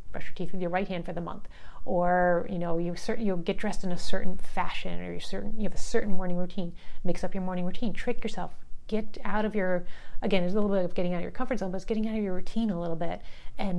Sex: female